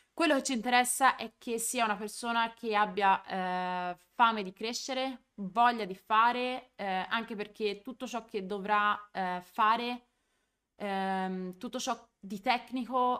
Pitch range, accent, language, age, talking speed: 190-225 Hz, native, Italian, 20-39, 145 wpm